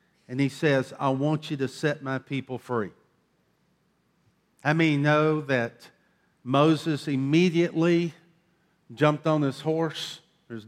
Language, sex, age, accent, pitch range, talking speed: English, male, 50-69, American, 130-175 Hz, 125 wpm